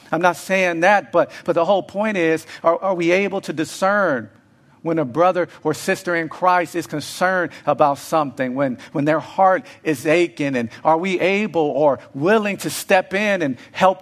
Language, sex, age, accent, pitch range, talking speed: English, male, 50-69, American, 130-170 Hz, 190 wpm